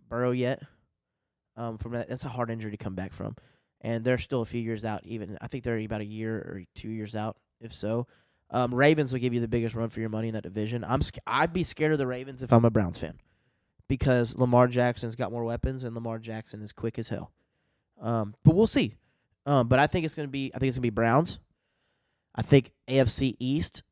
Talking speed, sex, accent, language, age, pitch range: 235 wpm, male, American, English, 20-39, 110-125 Hz